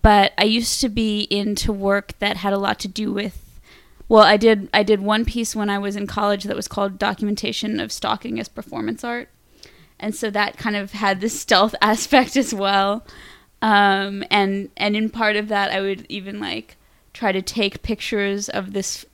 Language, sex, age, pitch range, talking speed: English, female, 20-39, 195-215 Hz, 200 wpm